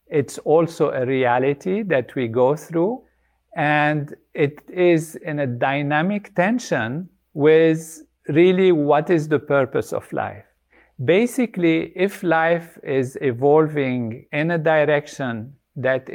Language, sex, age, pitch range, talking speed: English, male, 50-69, 130-170 Hz, 120 wpm